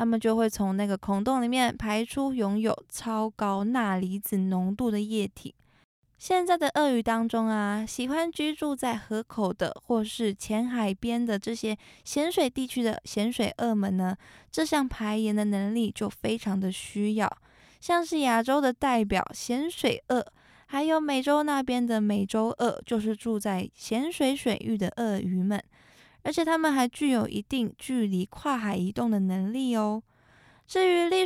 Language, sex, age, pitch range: Chinese, female, 20-39, 210-270 Hz